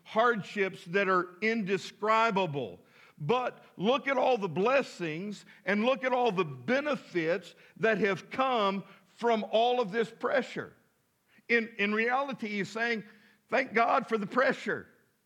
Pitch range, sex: 185-230 Hz, male